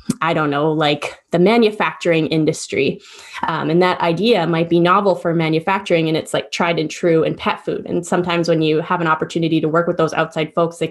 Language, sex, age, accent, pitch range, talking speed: English, female, 20-39, American, 165-200 Hz, 215 wpm